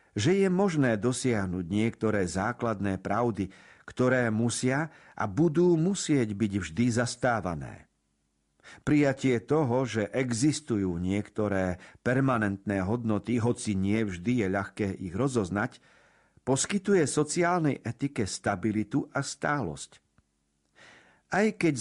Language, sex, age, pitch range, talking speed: Slovak, male, 50-69, 105-145 Hz, 100 wpm